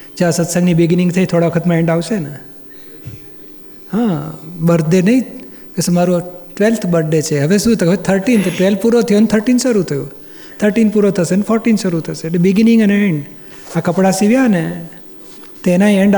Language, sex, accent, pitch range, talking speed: Gujarati, male, native, 170-205 Hz, 175 wpm